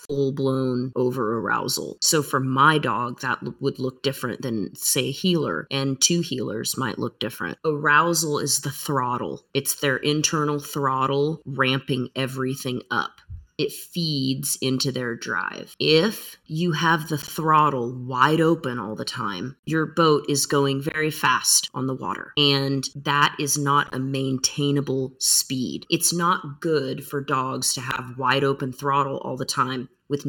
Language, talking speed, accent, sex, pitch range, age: English, 155 wpm, American, female, 130-150 Hz, 30-49